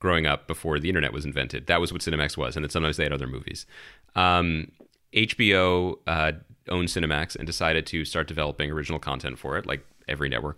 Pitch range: 80-105 Hz